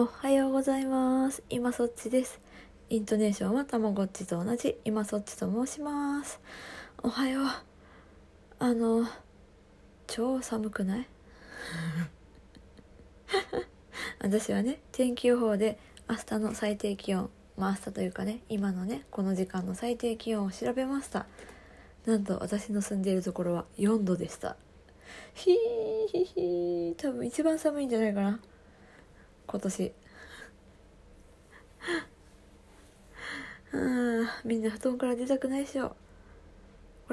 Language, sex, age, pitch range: Japanese, female, 20-39, 200-245 Hz